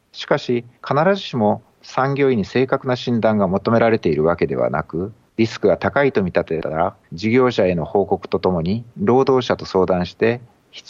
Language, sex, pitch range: Japanese, male, 100-125 Hz